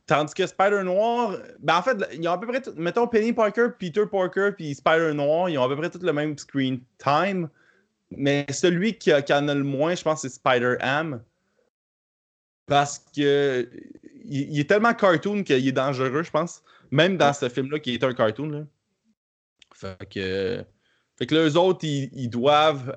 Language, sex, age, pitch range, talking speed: French, male, 20-39, 120-165 Hz, 195 wpm